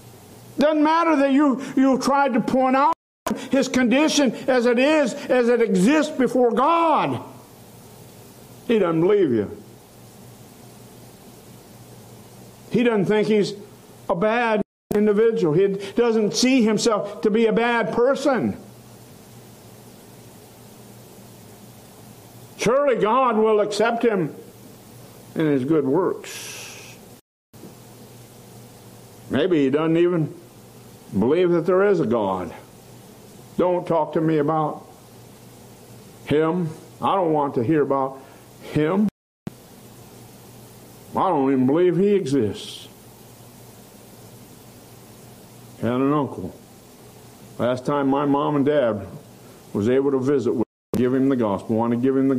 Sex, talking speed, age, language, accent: male, 115 wpm, 60-79, English, American